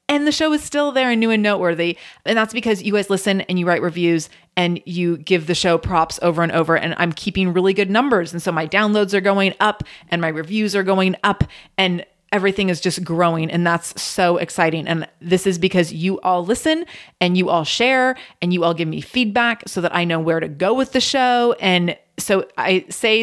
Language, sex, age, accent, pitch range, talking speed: English, female, 30-49, American, 170-205 Hz, 225 wpm